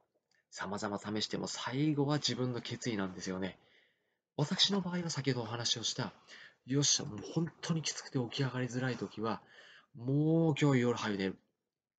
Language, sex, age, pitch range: Japanese, male, 30-49, 105-150 Hz